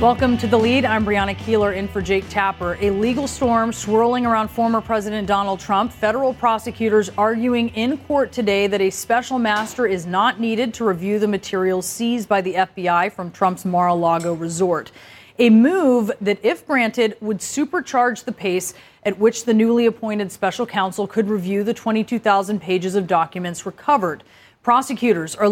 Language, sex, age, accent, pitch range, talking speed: English, female, 30-49, American, 195-240 Hz, 165 wpm